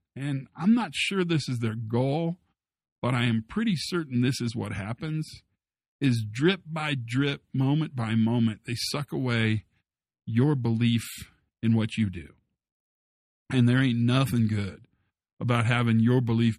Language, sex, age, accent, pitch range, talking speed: English, male, 50-69, American, 105-145 Hz, 150 wpm